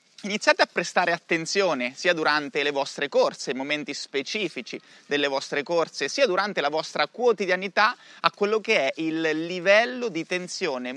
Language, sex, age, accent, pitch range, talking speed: Italian, male, 30-49, native, 140-195 Hz, 155 wpm